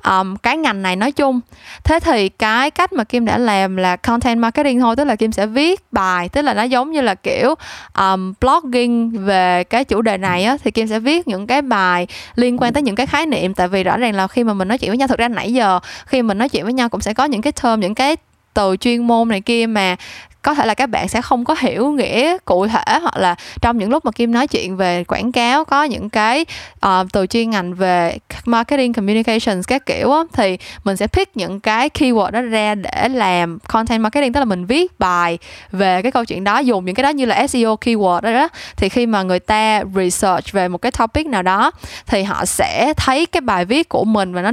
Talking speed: 240 wpm